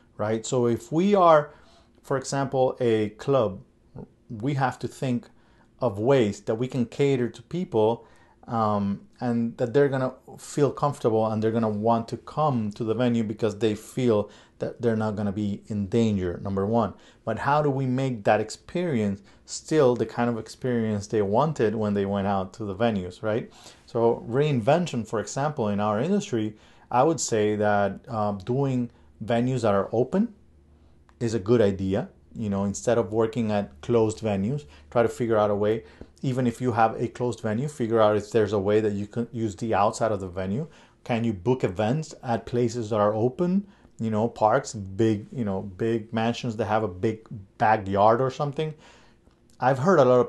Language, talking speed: English, 190 wpm